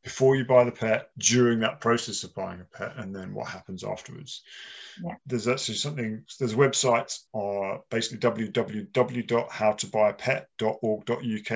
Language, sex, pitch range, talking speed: English, male, 110-140 Hz, 130 wpm